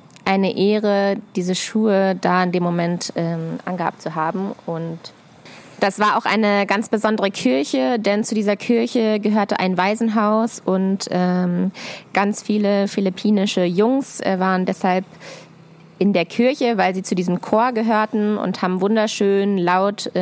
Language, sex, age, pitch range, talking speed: German, female, 20-39, 180-210 Hz, 150 wpm